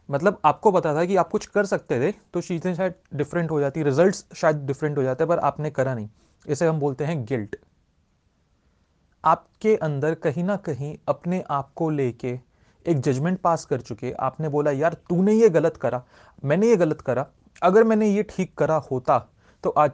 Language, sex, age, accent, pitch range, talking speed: Hindi, male, 30-49, native, 130-185 Hz, 190 wpm